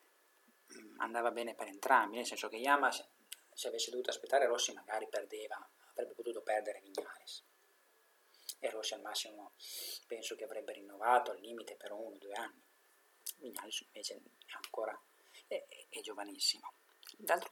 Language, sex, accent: Italian, male, native